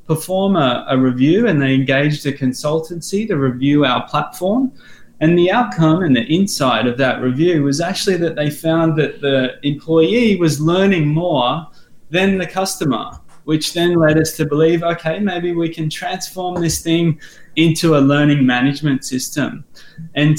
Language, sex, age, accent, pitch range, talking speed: English, male, 20-39, Australian, 145-170 Hz, 160 wpm